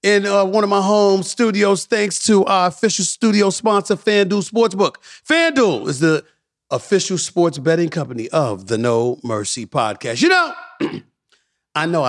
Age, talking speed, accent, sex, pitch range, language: 40-59, 155 wpm, American, male, 160-245 Hz, English